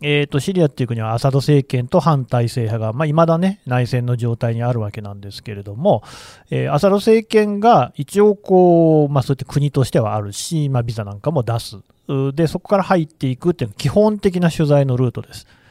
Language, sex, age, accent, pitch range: Japanese, male, 40-59, native, 120-170 Hz